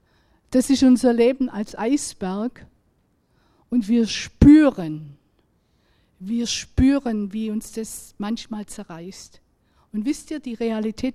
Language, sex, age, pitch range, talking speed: German, female, 50-69, 205-255 Hz, 115 wpm